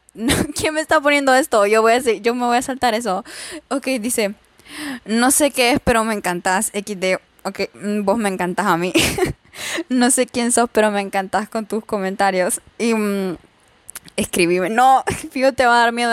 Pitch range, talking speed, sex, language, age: 200-245 Hz, 185 wpm, female, Spanish, 10-29